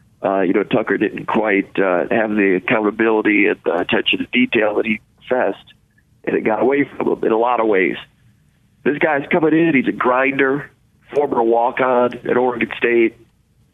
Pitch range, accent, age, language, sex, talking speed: 115-140 Hz, American, 40-59, English, male, 180 wpm